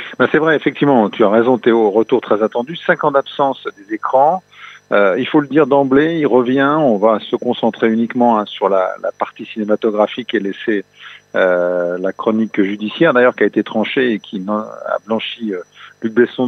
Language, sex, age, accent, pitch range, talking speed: French, male, 50-69, French, 110-140 Hz, 195 wpm